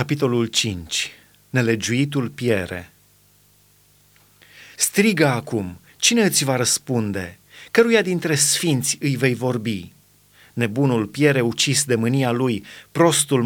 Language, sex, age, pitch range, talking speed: Romanian, male, 30-49, 125-150 Hz, 105 wpm